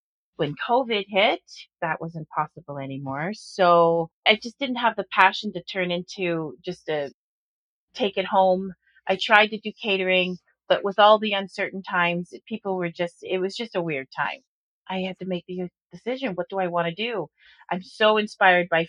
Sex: female